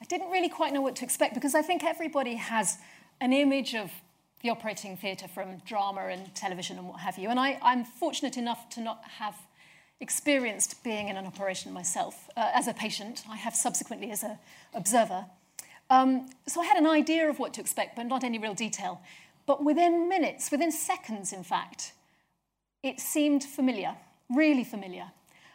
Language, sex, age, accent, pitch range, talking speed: English, female, 40-59, British, 205-275 Hz, 180 wpm